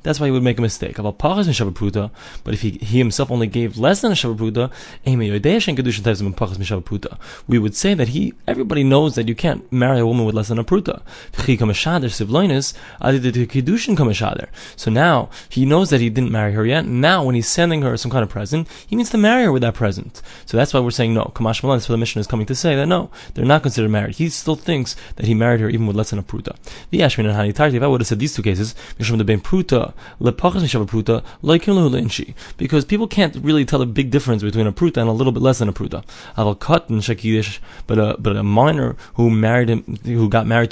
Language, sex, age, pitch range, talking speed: English, male, 20-39, 110-150 Hz, 195 wpm